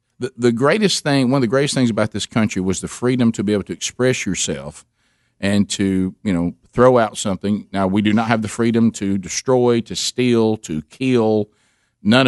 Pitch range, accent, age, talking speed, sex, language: 110-135 Hz, American, 50-69, 200 wpm, male, English